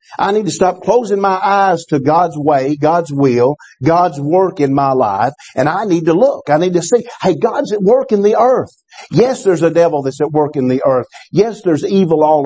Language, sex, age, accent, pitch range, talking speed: English, male, 50-69, American, 160-215 Hz, 225 wpm